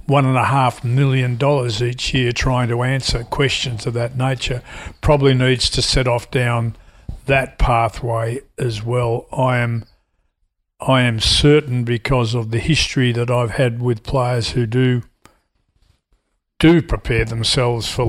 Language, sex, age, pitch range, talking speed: English, male, 50-69, 120-130 Hz, 135 wpm